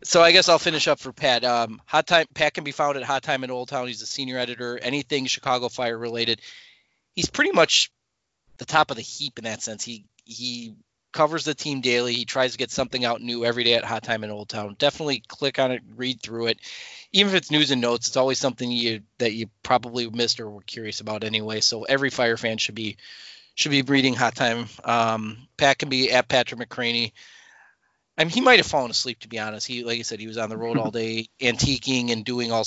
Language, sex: English, male